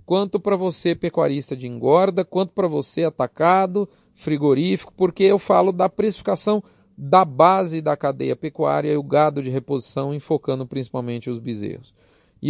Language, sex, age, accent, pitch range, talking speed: Portuguese, male, 40-59, Brazilian, 150-205 Hz, 150 wpm